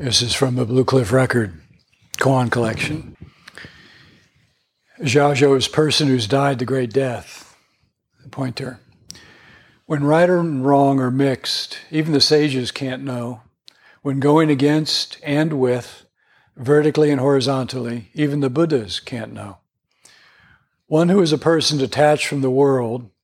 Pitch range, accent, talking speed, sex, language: 125-150 Hz, American, 130 wpm, male, English